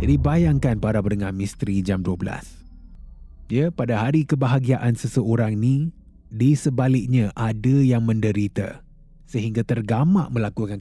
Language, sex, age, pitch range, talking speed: Malay, male, 20-39, 105-145 Hz, 115 wpm